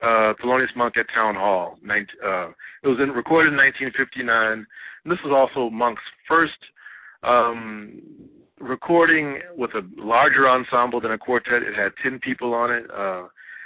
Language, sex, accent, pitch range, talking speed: English, male, American, 115-145 Hz, 145 wpm